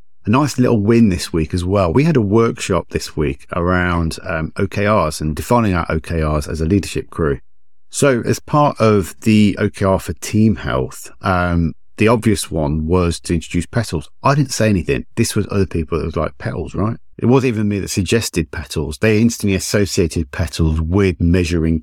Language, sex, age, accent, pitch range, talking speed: English, male, 50-69, British, 80-105 Hz, 185 wpm